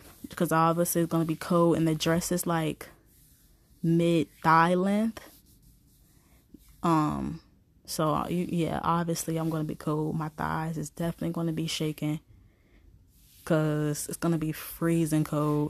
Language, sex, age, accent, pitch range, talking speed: English, female, 20-39, American, 155-175 Hz, 150 wpm